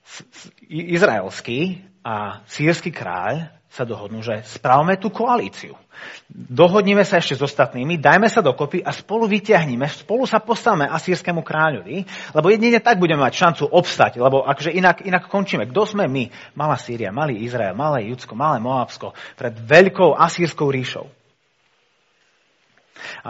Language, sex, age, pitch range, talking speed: Slovak, male, 30-49, 120-170 Hz, 140 wpm